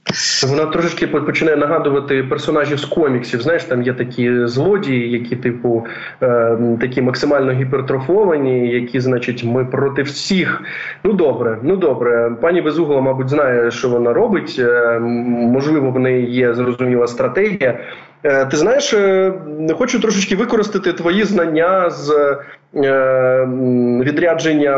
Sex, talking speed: male, 130 wpm